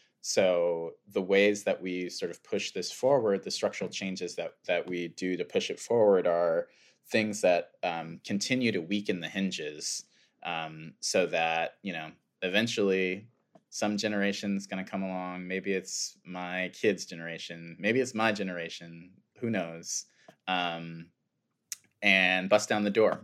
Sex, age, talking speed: male, 20-39, 155 wpm